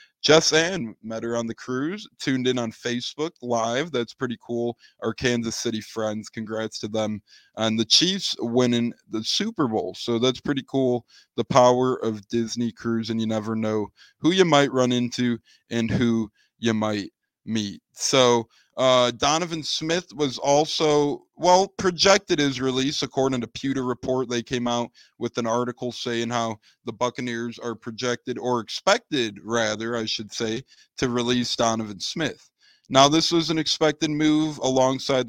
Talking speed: 160 wpm